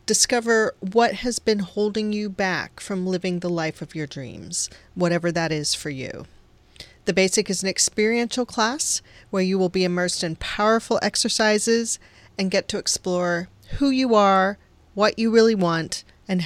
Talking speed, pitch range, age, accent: 165 wpm, 180-220 Hz, 40-59, American